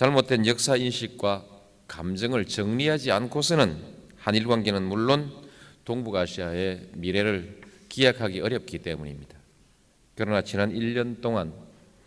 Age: 40-59